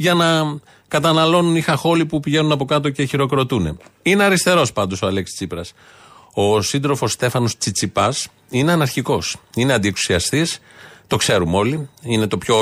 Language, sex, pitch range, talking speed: Greek, male, 110-145 Hz, 145 wpm